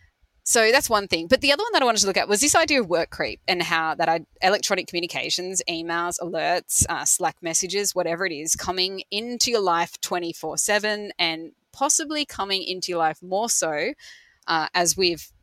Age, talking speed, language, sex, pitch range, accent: 20-39, 190 wpm, English, female, 160-200 Hz, Australian